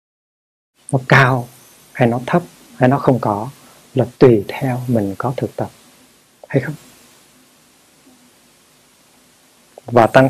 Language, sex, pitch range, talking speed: Vietnamese, male, 115-135 Hz, 115 wpm